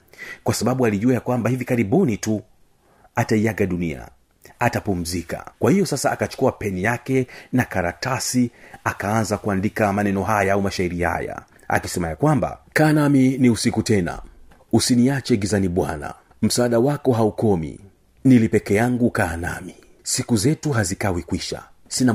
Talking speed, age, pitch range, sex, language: 125 wpm, 40-59, 95-125 Hz, male, Swahili